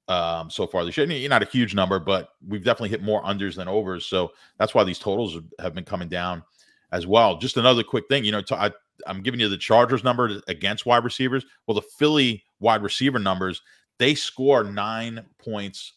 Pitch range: 90-115 Hz